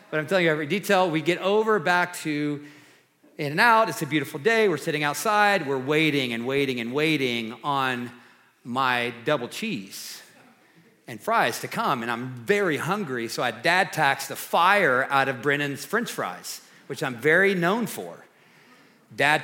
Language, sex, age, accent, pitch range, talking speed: English, male, 40-59, American, 135-175 Hz, 175 wpm